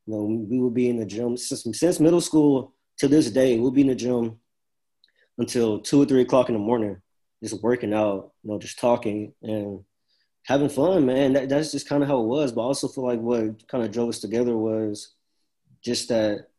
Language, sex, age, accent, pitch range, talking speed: English, male, 20-39, American, 110-125 Hz, 220 wpm